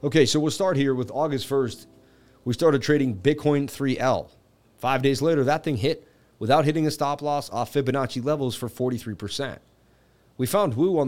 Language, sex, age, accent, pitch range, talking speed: English, male, 30-49, American, 105-140 Hz, 180 wpm